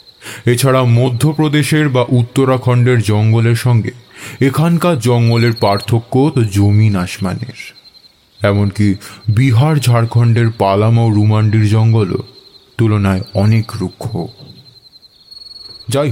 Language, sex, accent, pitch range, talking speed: Bengali, male, native, 105-125 Hz, 85 wpm